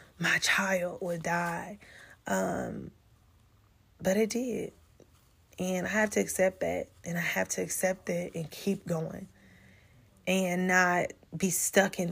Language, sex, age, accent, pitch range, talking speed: English, female, 20-39, American, 170-210 Hz, 140 wpm